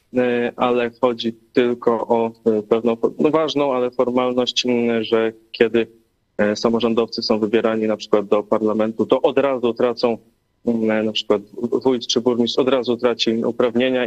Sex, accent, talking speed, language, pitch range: male, native, 130 wpm, Polish, 105-120 Hz